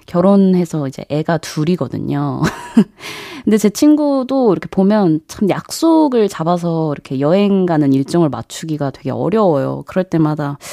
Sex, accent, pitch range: female, native, 155-215 Hz